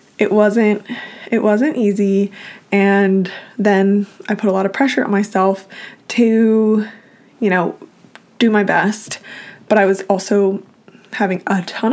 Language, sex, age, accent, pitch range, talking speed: English, female, 20-39, American, 190-220 Hz, 140 wpm